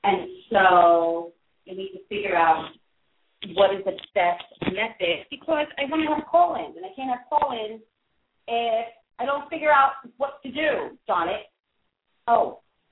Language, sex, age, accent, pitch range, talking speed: English, female, 40-59, American, 200-300 Hz, 165 wpm